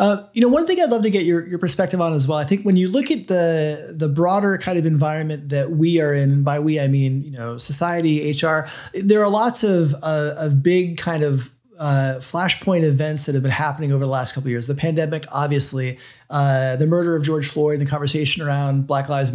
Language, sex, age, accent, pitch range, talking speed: English, male, 30-49, American, 145-185 Hz, 235 wpm